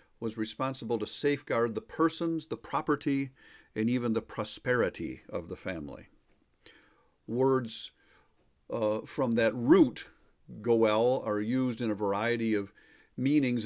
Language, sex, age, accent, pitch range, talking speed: English, male, 50-69, American, 105-130 Hz, 125 wpm